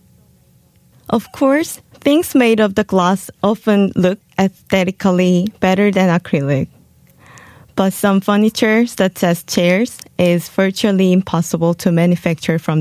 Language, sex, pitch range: Korean, female, 175-210 Hz